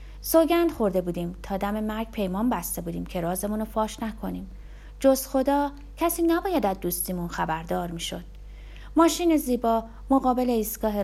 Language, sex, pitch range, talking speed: Persian, female, 180-255 Hz, 140 wpm